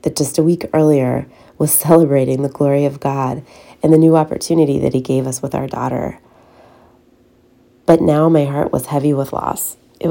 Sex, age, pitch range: female, 30-49, 140-175 Hz